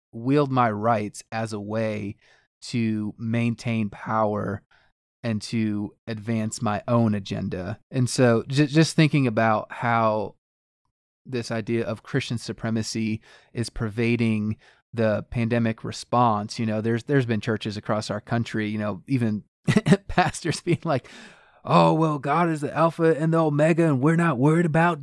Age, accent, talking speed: 30-49, American, 145 wpm